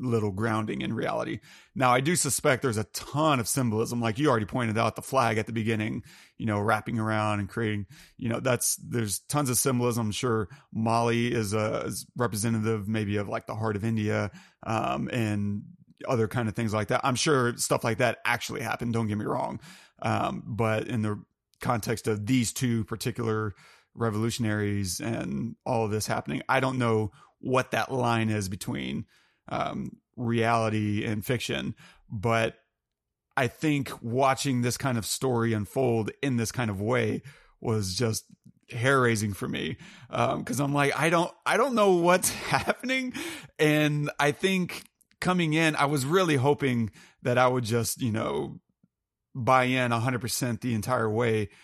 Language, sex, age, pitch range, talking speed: English, male, 30-49, 110-135 Hz, 170 wpm